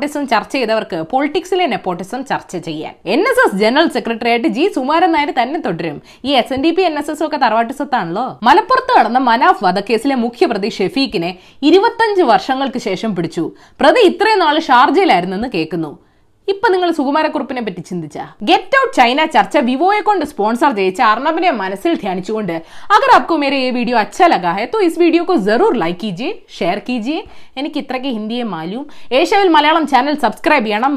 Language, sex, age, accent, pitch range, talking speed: Malayalam, female, 20-39, native, 210-350 Hz, 110 wpm